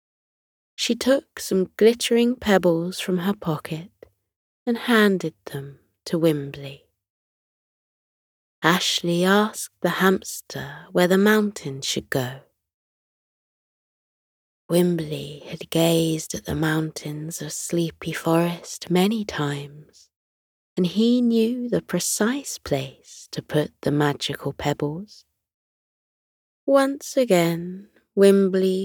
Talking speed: 100 wpm